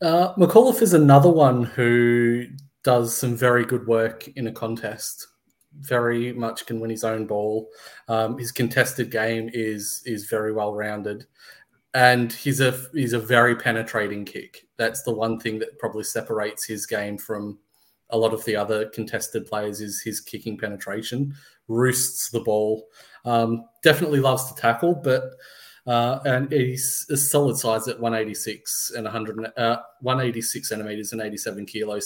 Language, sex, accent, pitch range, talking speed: English, male, Australian, 110-125 Hz, 155 wpm